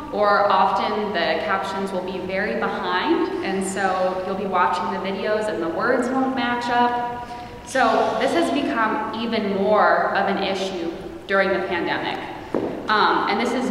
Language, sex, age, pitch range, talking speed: English, female, 20-39, 190-240 Hz, 160 wpm